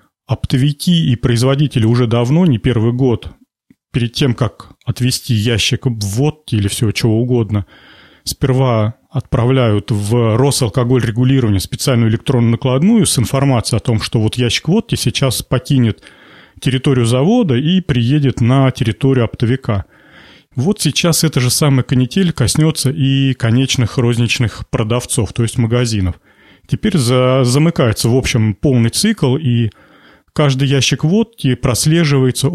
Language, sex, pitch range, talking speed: Russian, male, 115-145 Hz, 125 wpm